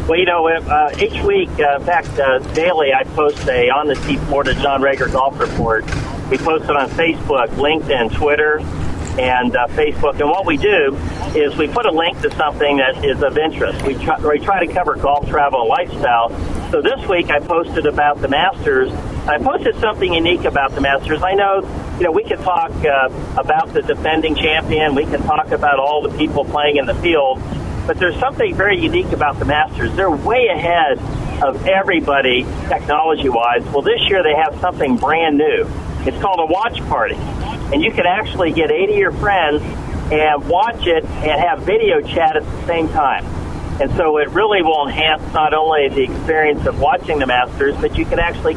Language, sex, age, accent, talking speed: English, male, 50-69, American, 200 wpm